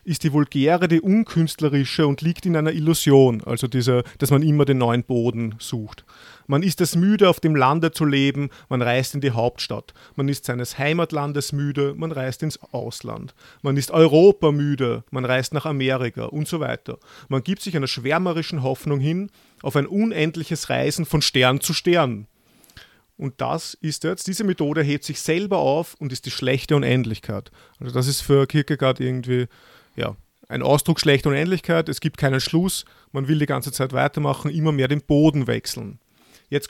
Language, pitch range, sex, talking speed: German, 130-165 Hz, male, 180 wpm